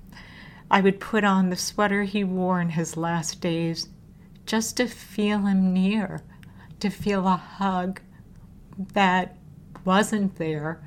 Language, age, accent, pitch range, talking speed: English, 50-69, American, 170-200 Hz, 130 wpm